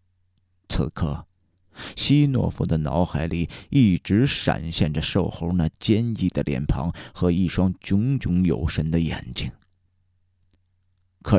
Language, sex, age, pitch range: Chinese, male, 50-69, 90-100 Hz